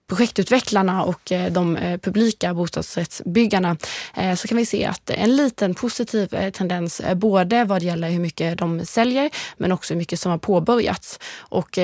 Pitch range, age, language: 165-205 Hz, 20-39, Swedish